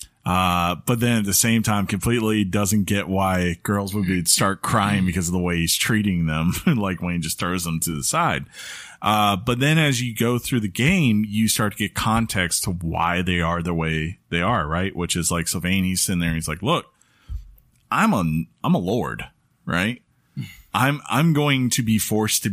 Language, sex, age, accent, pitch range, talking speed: English, male, 30-49, American, 85-110 Hz, 210 wpm